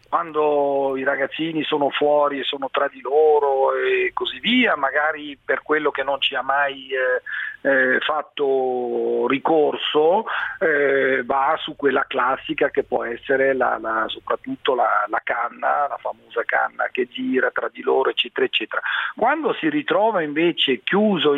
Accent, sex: native, male